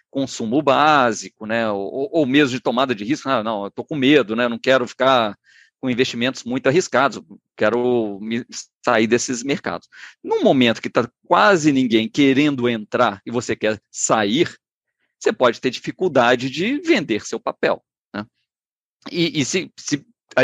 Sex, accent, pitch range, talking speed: male, Brazilian, 120-165 Hz, 165 wpm